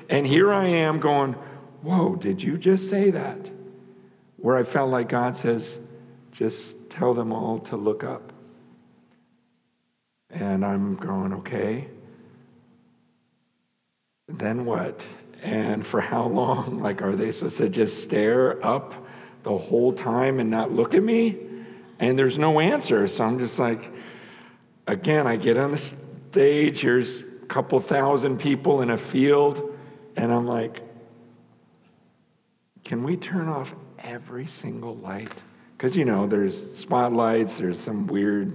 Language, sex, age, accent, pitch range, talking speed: English, male, 50-69, American, 105-145 Hz, 140 wpm